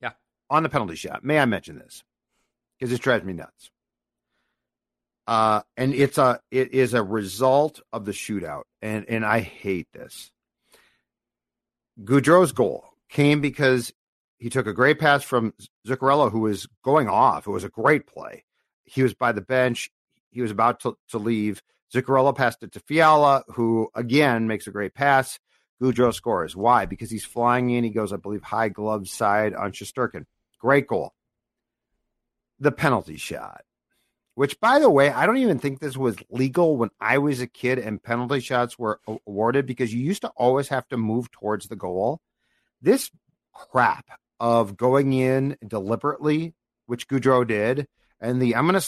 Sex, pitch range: male, 110-140 Hz